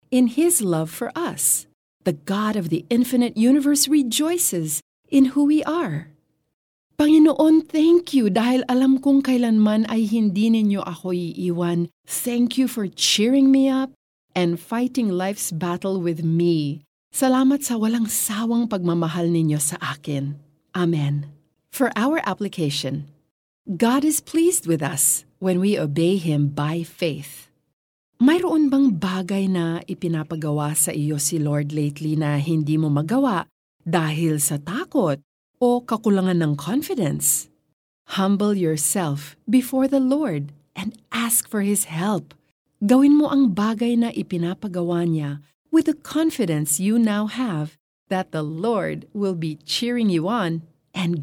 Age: 40-59